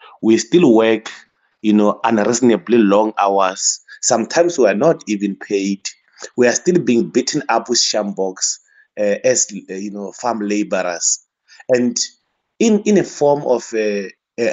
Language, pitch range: English, 105-135 Hz